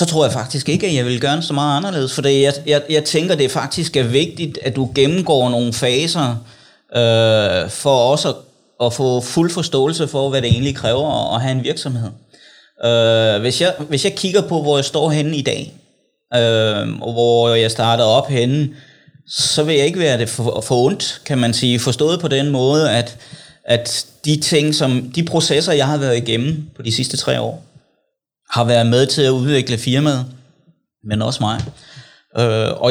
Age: 30-49